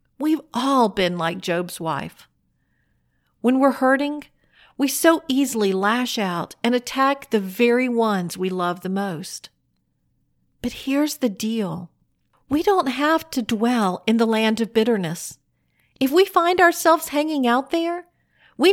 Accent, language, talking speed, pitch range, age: American, English, 145 wpm, 195-270 Hz, 50-69